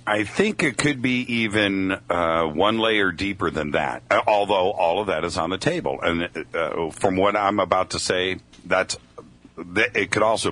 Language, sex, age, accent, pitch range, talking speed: English, male, 50-69, American, 80-110 Hz, 185 wpm